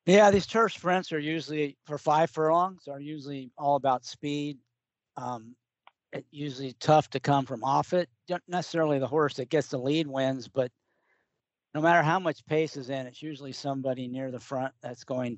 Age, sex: 50-69, male